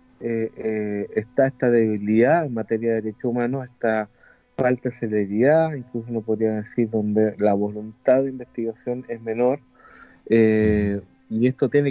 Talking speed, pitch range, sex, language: 145 wpm, 110-135 Hz, male, Spanish